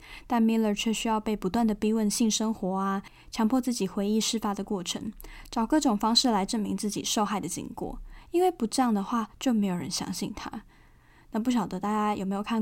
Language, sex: Chinese, female